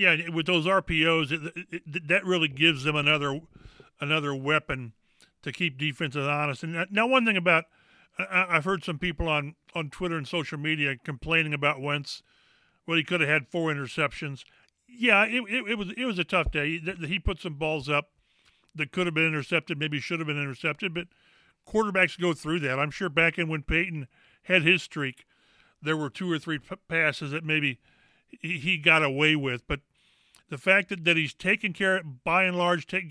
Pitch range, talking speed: 150-175 Hz, 195 wpm